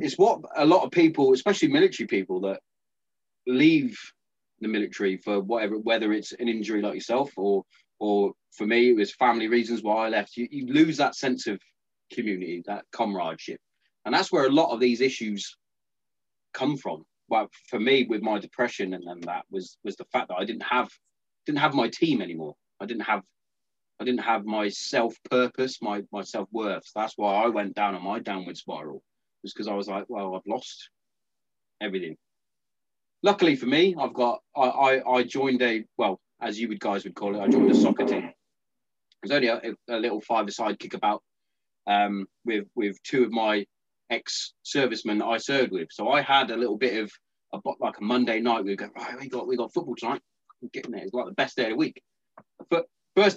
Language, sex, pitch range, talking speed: English, male, 100-130 Hz, 200 wpm